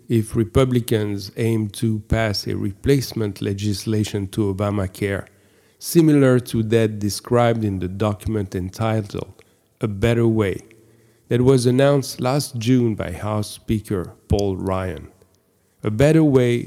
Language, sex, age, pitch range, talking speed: English, male, 50-69, 105-130 Hz, 120 wpm